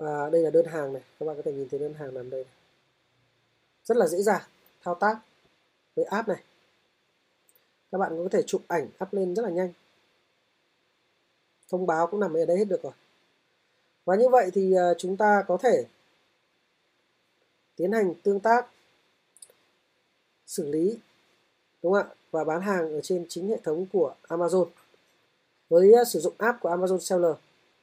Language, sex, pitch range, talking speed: Vietnamese, female, 165-205 Hz, 170 wpm